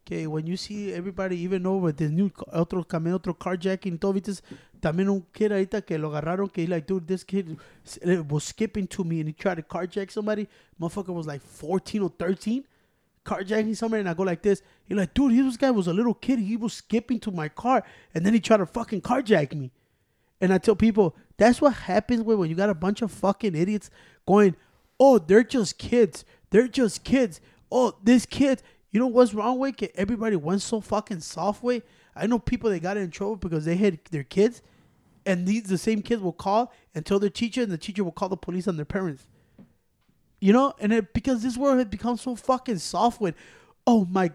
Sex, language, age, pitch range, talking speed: male, English, 20-39, 185-235 Hz, 200 wpm